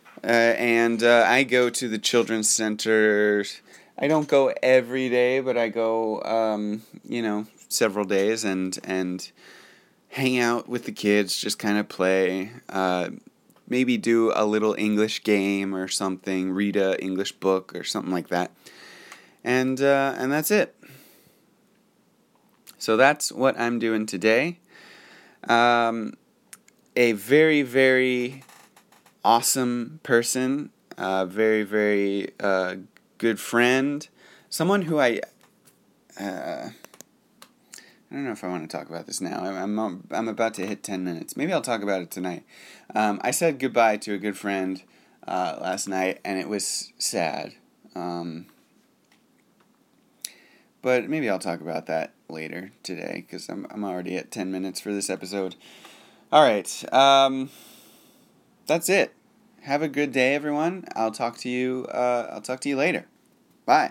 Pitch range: 95-125 Hz